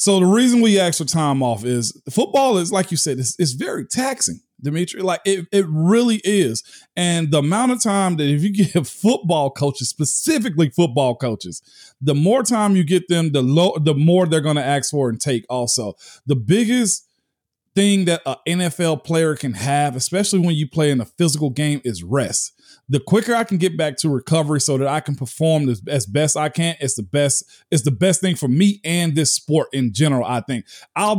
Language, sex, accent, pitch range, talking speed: English, male, American, 145-190 Hz, 210 wpm